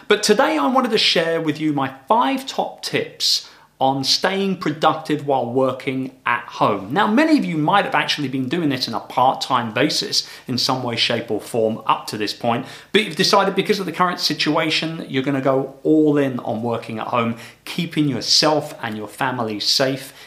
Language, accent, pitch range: English, British, 130-185 Hz